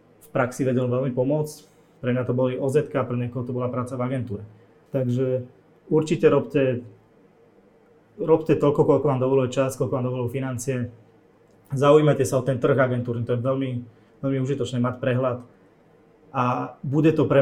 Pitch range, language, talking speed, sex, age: 125-140 Hz, Slovak, 160 wpm, male, 20-39